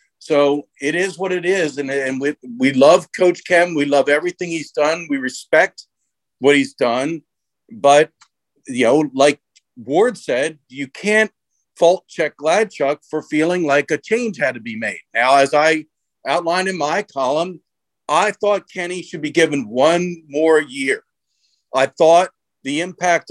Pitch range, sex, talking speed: 145-180 Hz, male, 160 wpm